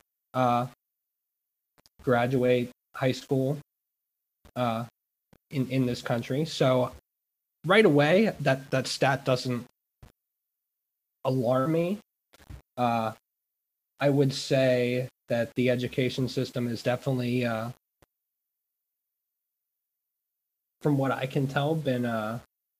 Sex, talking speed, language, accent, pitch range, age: male, 95 wpm, English, American, 125-145 Hz, 20-39